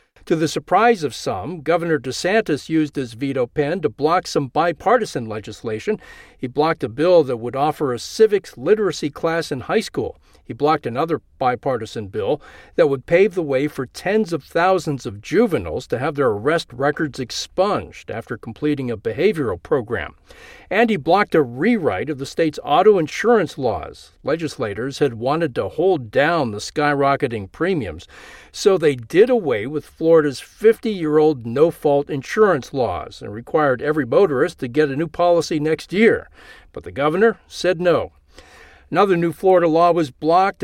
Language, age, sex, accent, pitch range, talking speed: English, 50-69, male, American, 135-180 Hz, 160 wpm